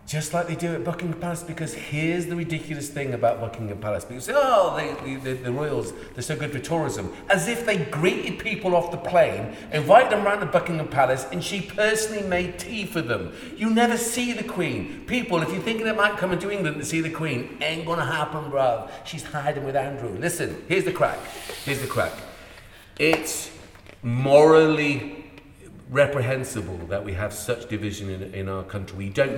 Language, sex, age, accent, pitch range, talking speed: English, male, 40-59, British, 110-165 Hz, 190 wpm